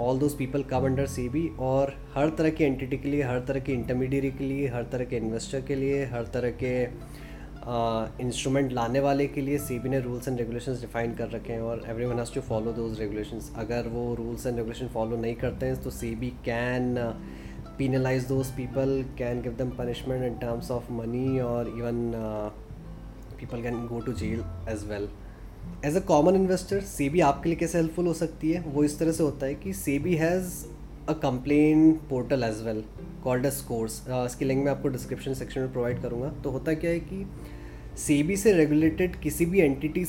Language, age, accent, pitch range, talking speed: Hindi, 20-39, native, 120-145 Hz, 200 wpm